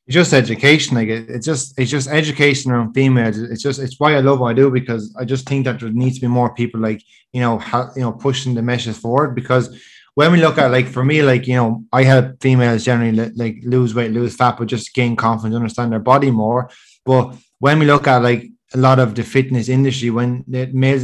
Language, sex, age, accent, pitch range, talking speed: English, male, 20-39, Irish, 120-135 Hz, 245 wpm